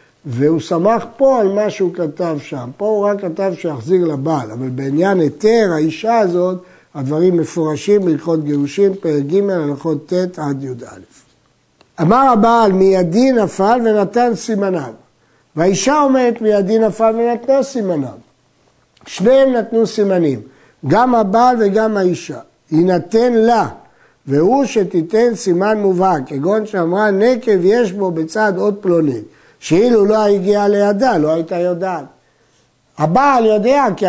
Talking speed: 125 wpm